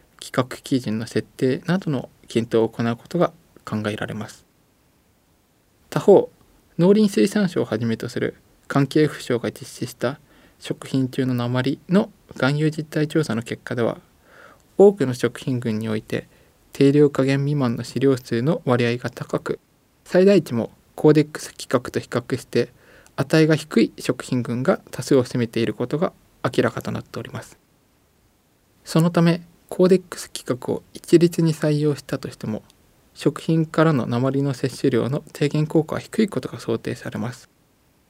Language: Japanese